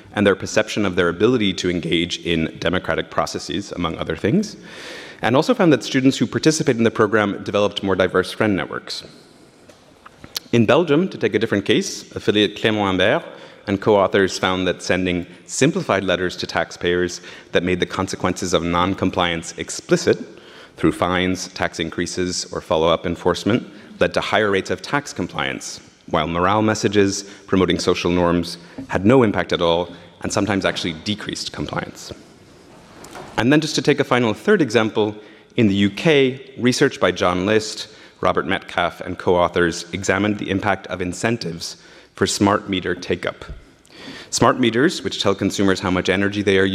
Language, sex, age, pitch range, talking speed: French, male, 30-49, 90-105 Hz, 160 wpm